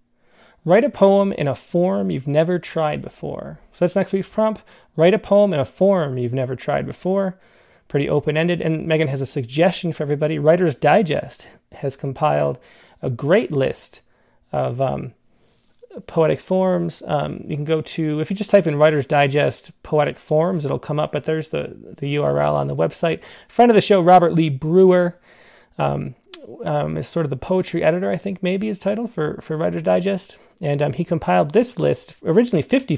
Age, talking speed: 30-49, 185 wpm